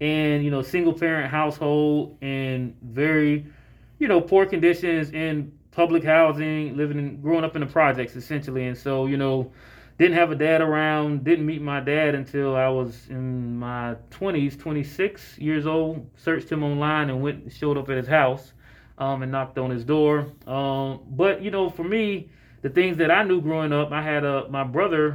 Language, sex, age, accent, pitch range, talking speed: English, male, 20-39, American, 135-165 Hz, 190 wpm